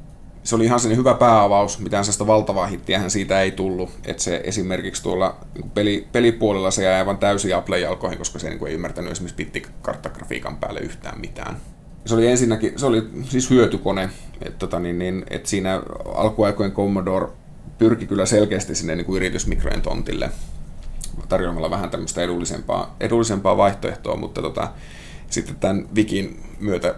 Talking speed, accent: 140 wpm, native